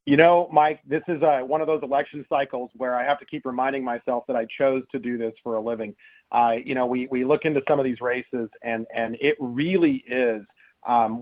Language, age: English, 40-59